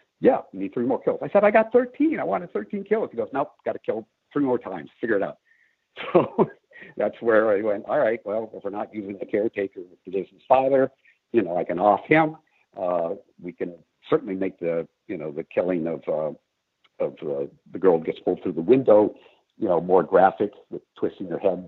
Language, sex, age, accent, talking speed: English, male, 60-79, American, 230 wpm